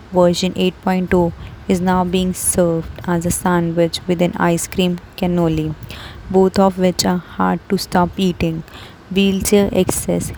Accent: Indian